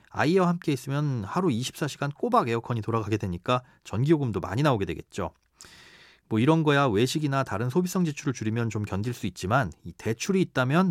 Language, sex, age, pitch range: Korean, male, 30-49, 105-150 Hz